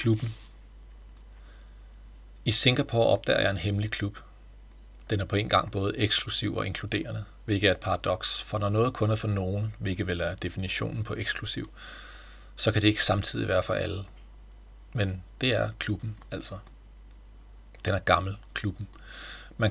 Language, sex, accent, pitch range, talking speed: Danish, male, native, 95-110 Hz, 155 wpm